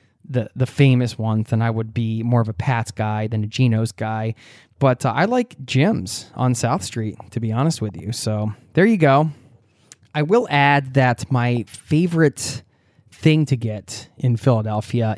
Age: 20-39